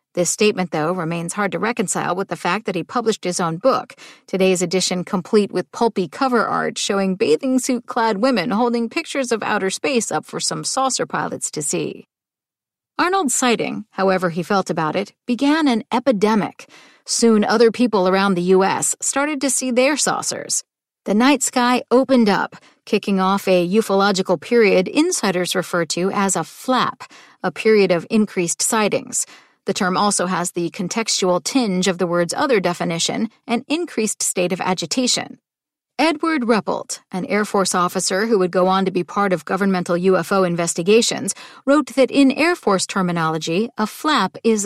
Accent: American